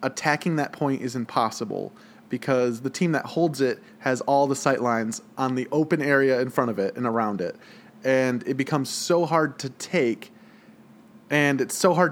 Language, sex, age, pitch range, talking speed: English, male, 20-39, 130-165 Hz, 190 wpm